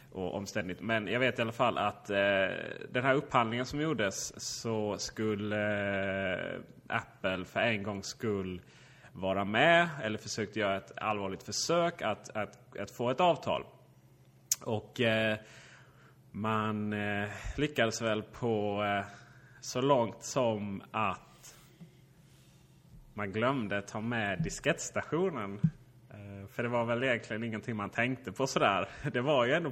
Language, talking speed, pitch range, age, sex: Swedish, 120 wpm, 105-130 Hz, 30-49, male